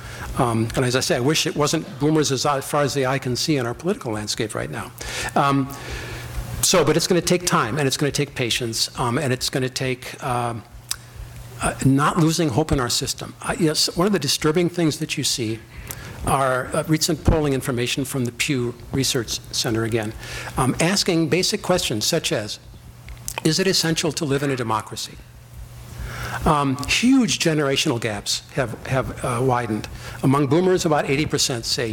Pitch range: 120-155 Hz